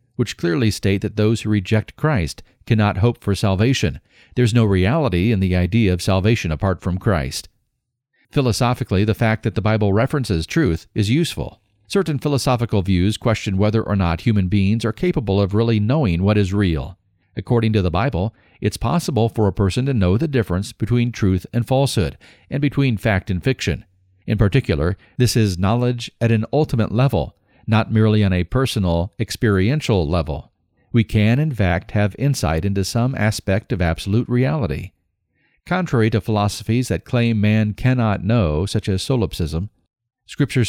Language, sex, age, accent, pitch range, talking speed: English, male, 50-69, American, 95-120 Hz, 170 wpm